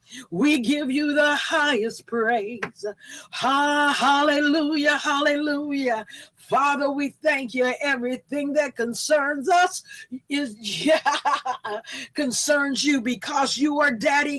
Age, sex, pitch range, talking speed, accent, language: 50-69, female, 255-295 Hz, 95 wpm, American, English